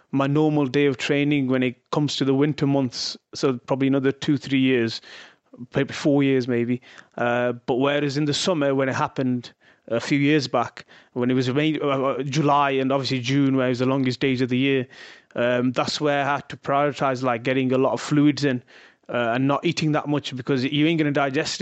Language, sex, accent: English, male, British